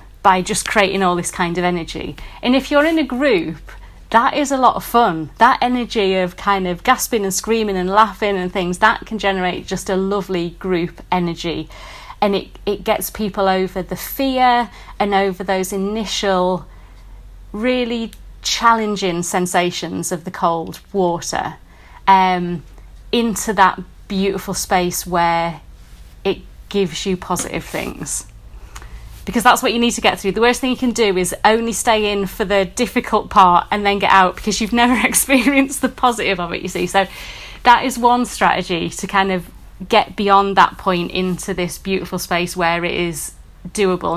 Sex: female